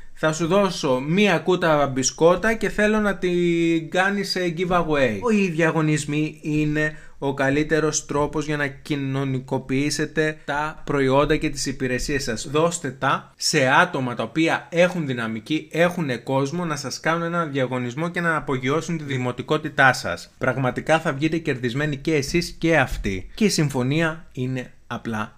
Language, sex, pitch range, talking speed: Greek, male, 135-170 Hz, 145 wpm